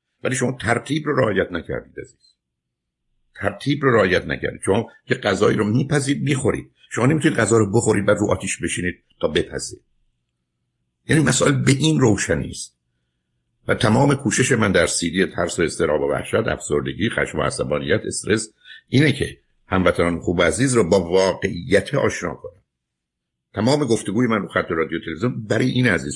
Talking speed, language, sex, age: 160 wpm, Persian, male, 60-79